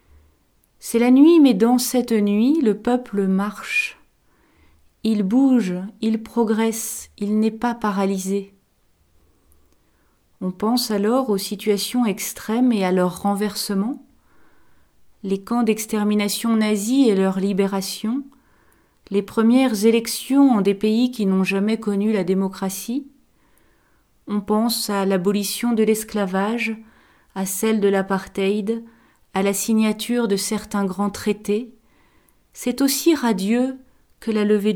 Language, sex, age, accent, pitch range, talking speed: French, female, 40-59, French, 200-245 Hz, 120 wpm